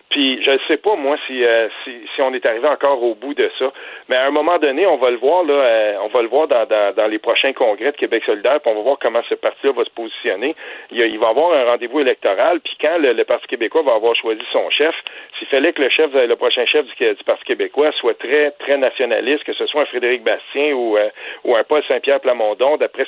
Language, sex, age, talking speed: French, male, 50-69, 265 wpm